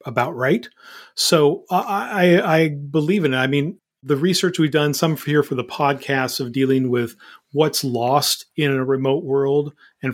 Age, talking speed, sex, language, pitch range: 40-59, 170 wpm, male, English, 125-150 Hz